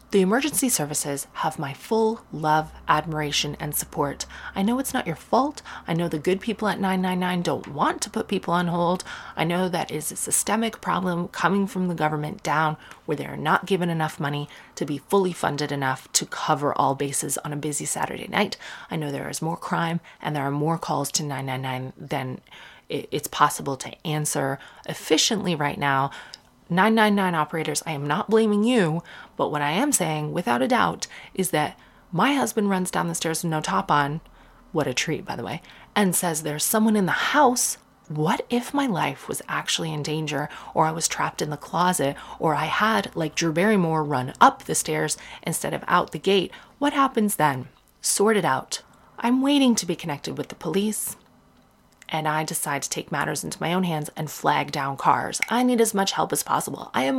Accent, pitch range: American, 150-200 Hz